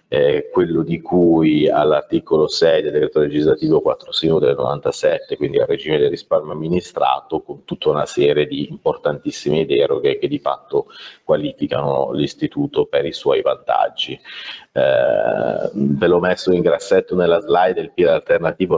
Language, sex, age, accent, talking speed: Italian, male, 30-49, native, 145 wpm